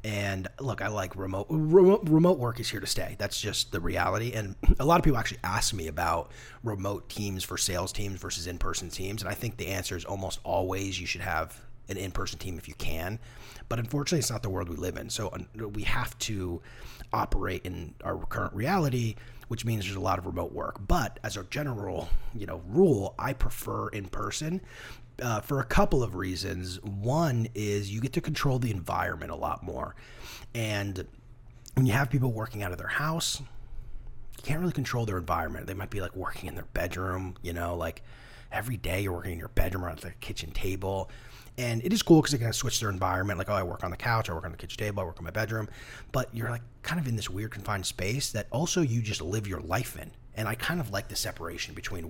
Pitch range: 95-120 Hz